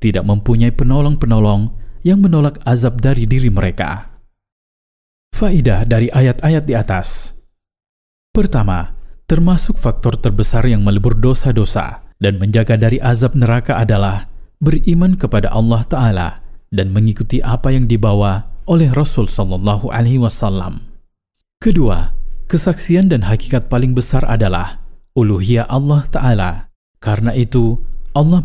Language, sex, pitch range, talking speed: Indonesian, male, 105-130 Hz, 115 wpm